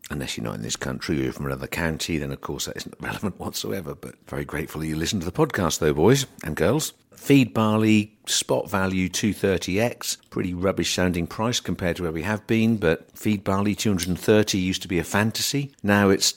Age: 50-69